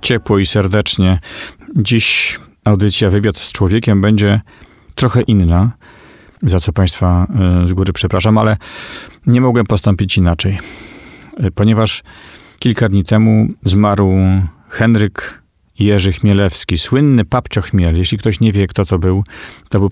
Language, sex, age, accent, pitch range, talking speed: Polish, male, 40-59, native, 95-105 Hz, 125 wpm